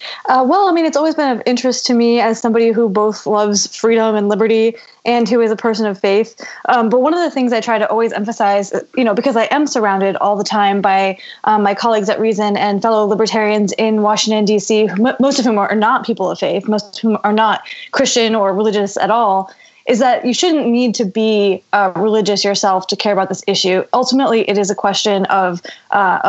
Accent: American